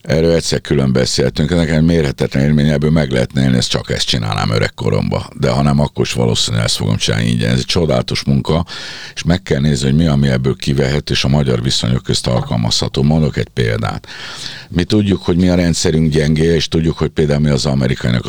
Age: 50-69